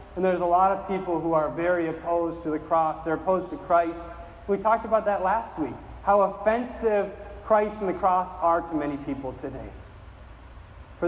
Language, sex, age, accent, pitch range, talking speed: English, male, 40-59, American, 160-205 Hz, 190 wpm